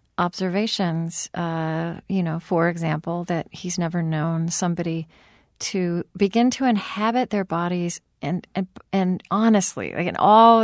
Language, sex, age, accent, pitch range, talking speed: English, female, 40-59, American, 175-225 Hz, 135 wpm